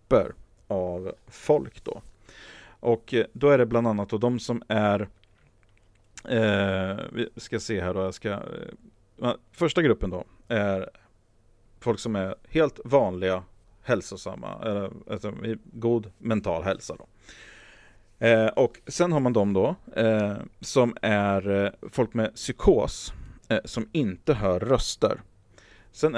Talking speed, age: 130 wpm, 40-59